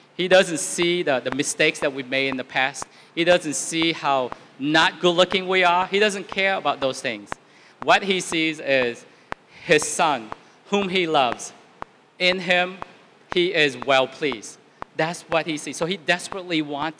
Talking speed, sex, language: 170 wpm, male, English